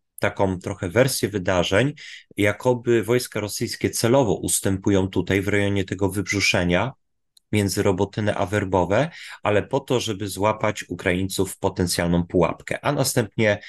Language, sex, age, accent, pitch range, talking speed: Polish, male, 30-49, native, 95-120 Hz, 125 wpm